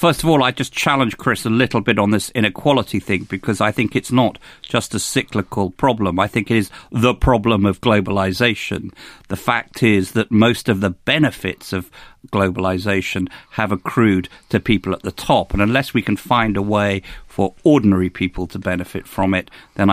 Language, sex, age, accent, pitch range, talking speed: English, male, 50-69, British, 95-125 Hz, 190 wpm